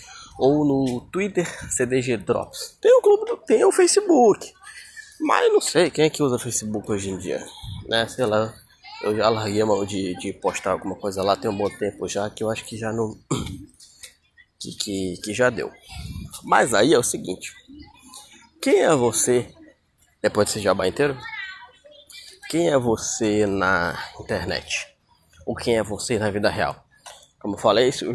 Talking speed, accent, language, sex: 170 wpm, Brazilian, Portuguese, male